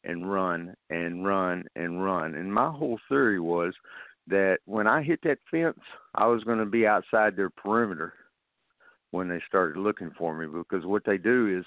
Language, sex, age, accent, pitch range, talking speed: English, male, 50-69, American, 90-115 Hz, 185 wpm